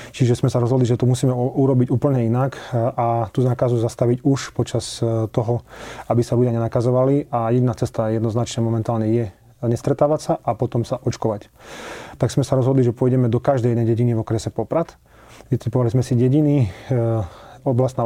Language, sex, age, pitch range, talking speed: Slovak, male, 30-49, 115-130 Hz, 170 wpm